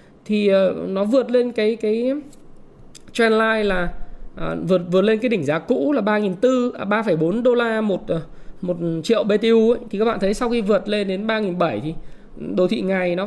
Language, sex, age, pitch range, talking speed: Vietnamese, male, 20-39, 195-245 Hz, 200 wpm